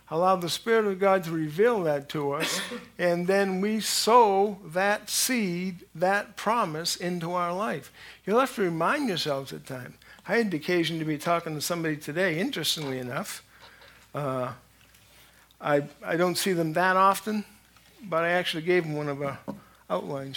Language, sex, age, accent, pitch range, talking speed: English, male, 50-69, American, 155-200 Hz, 170 wpm